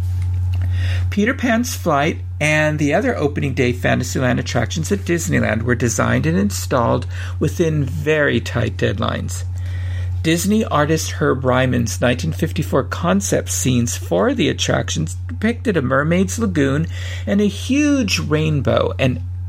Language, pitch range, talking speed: English, 90-125 Hz, 120 wpm